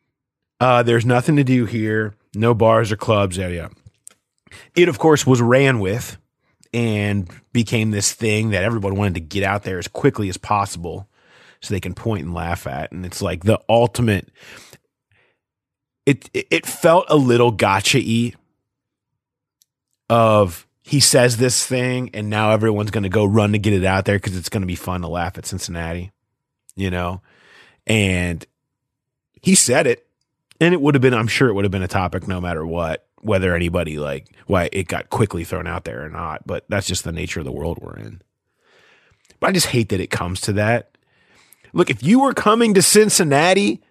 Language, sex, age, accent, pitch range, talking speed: English, male, 30-49, American, 95-135 Hz, 185 wpm